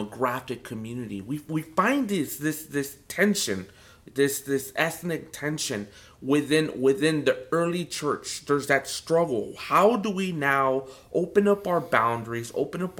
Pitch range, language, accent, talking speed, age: 120-180 Hz, English, American, 145 wpm, 30-49